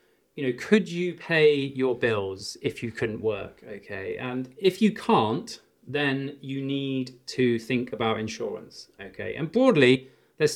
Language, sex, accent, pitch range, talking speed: English, male, British, 115-170 Hz, 155 wpm